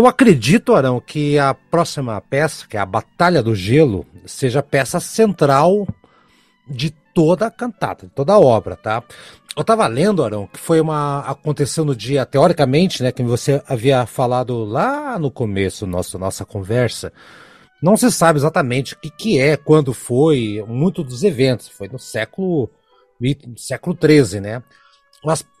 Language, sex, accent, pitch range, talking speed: Portuguese, male, Brazilian, 130-185 Hz, 160 wpm